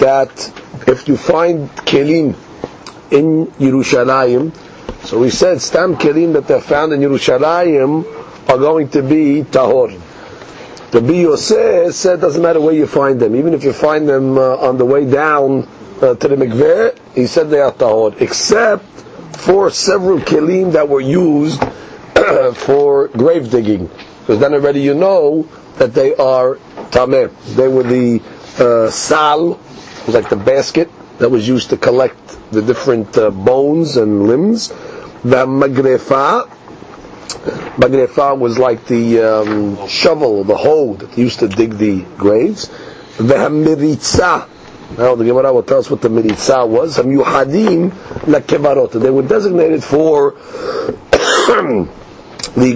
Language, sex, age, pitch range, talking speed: English, male, 50-69, 130-170 Hz, 145 wpm